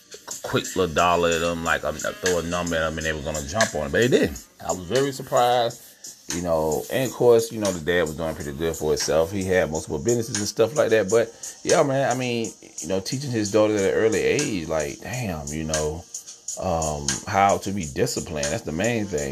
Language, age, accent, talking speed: English, 30-49, American, 245 wpm